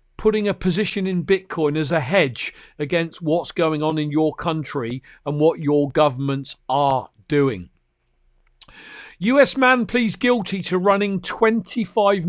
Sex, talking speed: male, 135 wpm